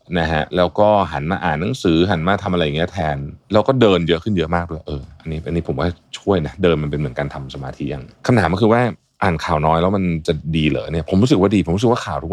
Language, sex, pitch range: Thai, male, 80-110 Hz